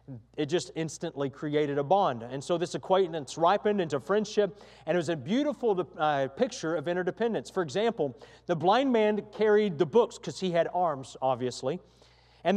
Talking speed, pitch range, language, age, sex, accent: 170 wpm, 150-200 Hz, English, 40-59, male, American